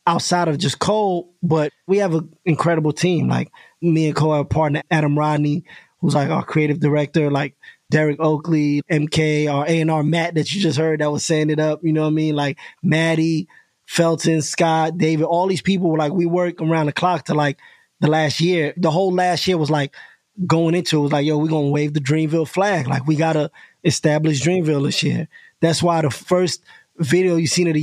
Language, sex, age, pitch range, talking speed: English, male, 20-39, 150-170 Hz, 220 wpm